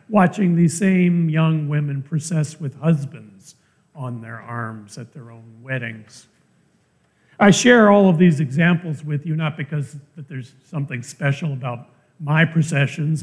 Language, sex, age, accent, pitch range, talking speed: English, male, 50-69, American, 140-190 Hz, 145 wpm